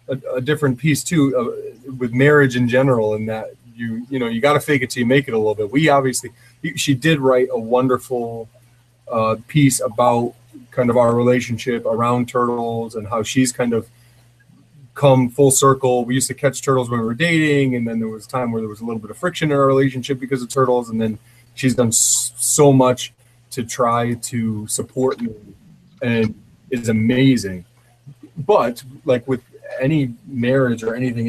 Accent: American